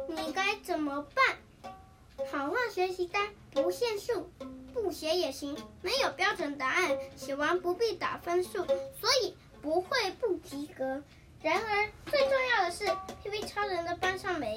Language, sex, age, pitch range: Chinese, female, 10-29, 290-380 Hz